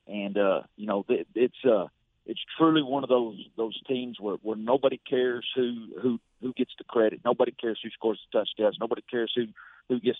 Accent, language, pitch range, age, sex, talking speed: American, English, 110-125 Hz, 50-69, male, 200 wpm